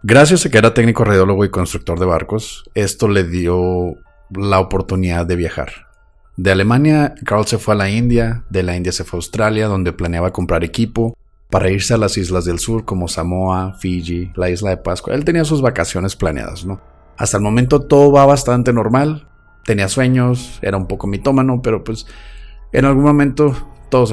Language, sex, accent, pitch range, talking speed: Spanish, male, Mexican, 90-110 Hz, 185 wpm